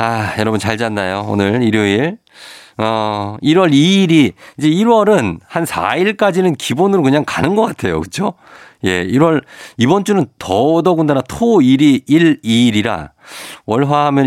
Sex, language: male, Korean